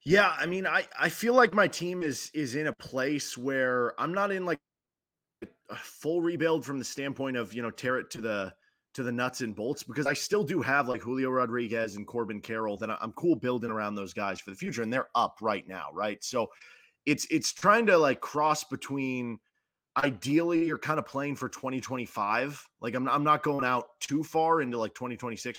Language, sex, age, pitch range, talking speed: English, male, 20-39, 110-140 Hz, 210 wpm